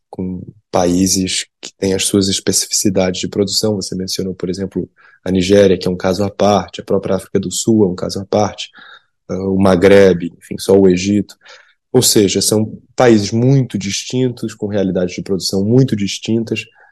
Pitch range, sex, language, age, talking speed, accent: 95-110 Hz, male, Portuguese, 20-39, 175 wpm, Brazilian